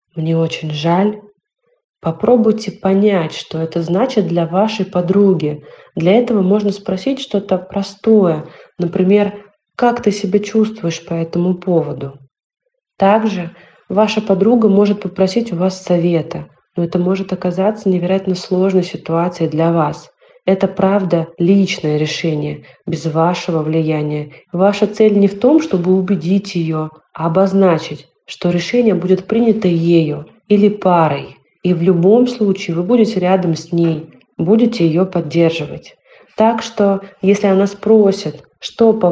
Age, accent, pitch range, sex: 30-49, native, 170-205 Hz, female